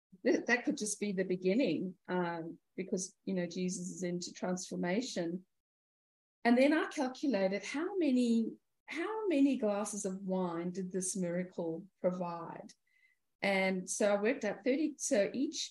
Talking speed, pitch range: 140 wpm, 185-230 Hz